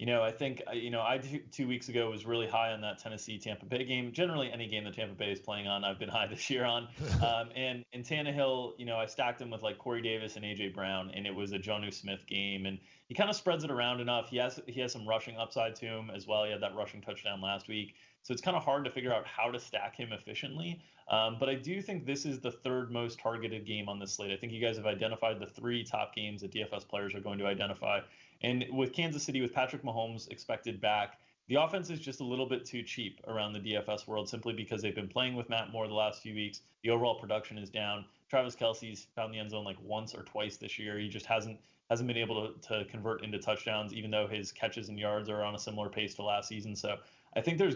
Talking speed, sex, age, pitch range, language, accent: 265 wpm, male, 30-49, 105-125 Hz, English, American